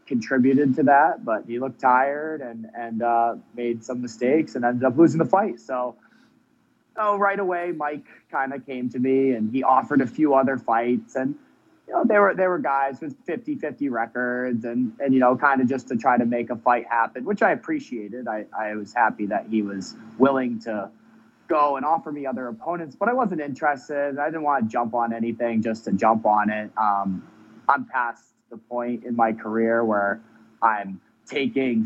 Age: 30-49